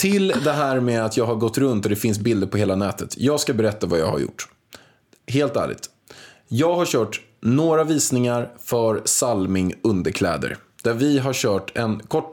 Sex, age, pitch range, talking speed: male, 20-39, 110-160 Hz, 190 wpm